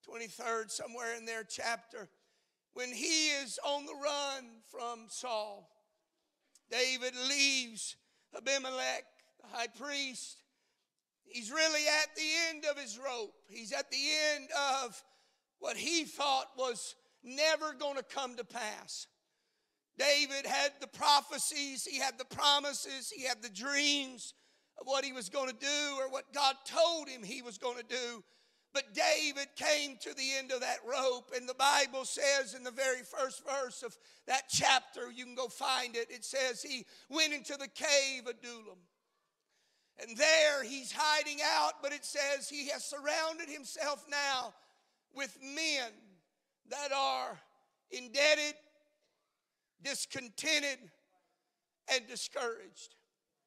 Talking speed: 145 wpm